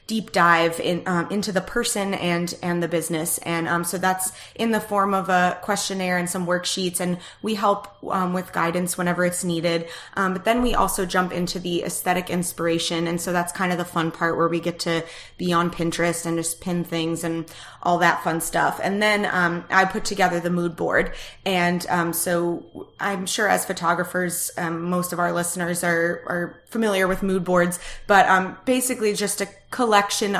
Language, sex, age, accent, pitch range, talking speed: English, female, 20-39, American, 170-190 Hz, 195 wpm